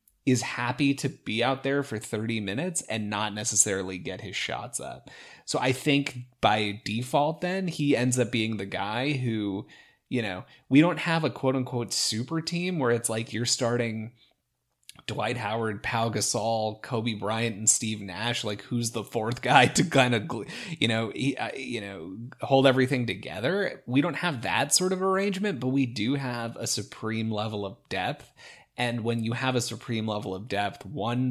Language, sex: English, male